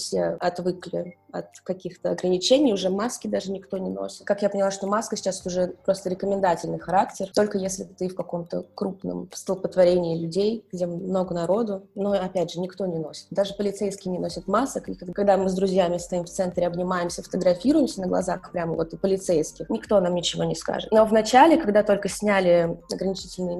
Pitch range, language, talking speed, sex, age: 180-220 Hz, Russian, 180 wpm, female, 20-39